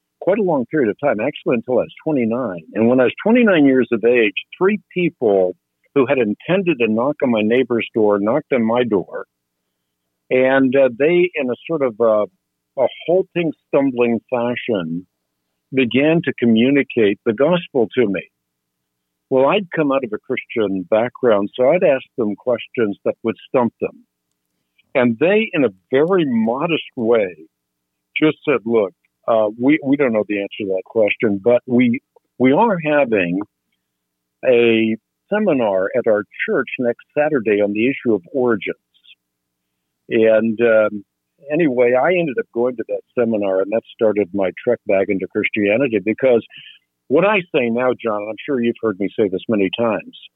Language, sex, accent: English, male, American